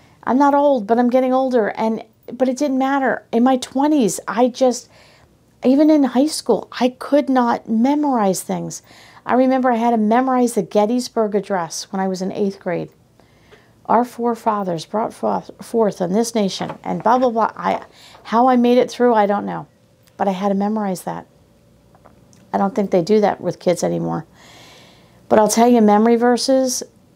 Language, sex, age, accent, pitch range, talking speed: English, female, 50-69, American, 200-245 Hz, 185 wpm